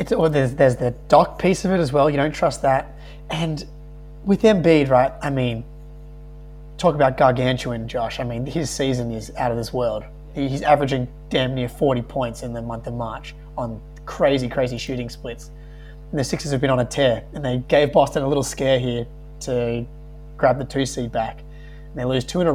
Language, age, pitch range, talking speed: English, 20-39, 130-150 Hz, 210 wpm